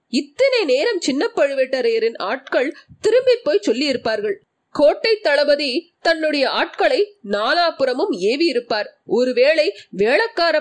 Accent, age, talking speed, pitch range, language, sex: native, 30-49, 90 wpm, 270-425 Hz, Tamil, female